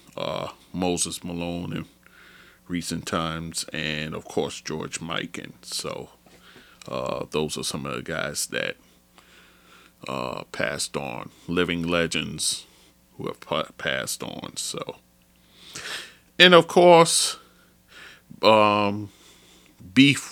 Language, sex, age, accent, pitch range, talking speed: English, male, 30-49, American, 80-100 Hz, 105 wpm